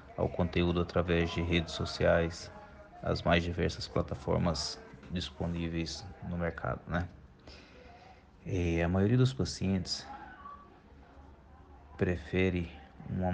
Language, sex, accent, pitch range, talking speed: Portuguese, male, Brazilian, 80-95 Hz, 95 wpm